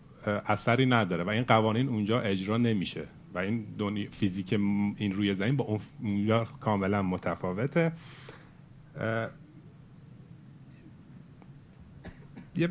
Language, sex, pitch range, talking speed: Persian, male, 95-130 Hz, 85 wpm